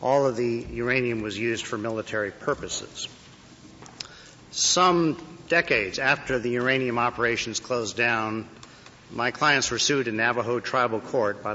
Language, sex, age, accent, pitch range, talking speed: English, male, 50-69, American, 110-135 Hz, 135 wpm